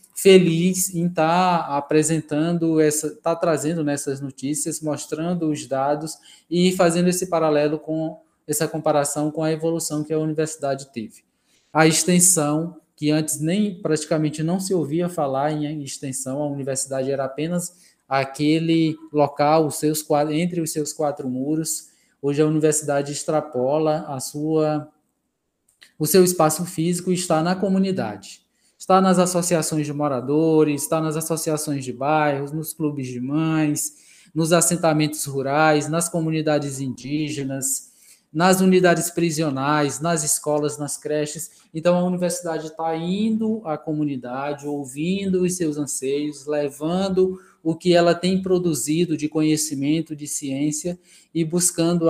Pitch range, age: 150-170 Hz, 20-39